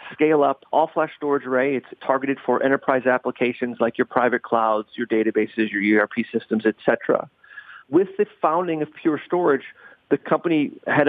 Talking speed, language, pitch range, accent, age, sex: 160 wpm, English, 115-140 Hz, American, 40-59, male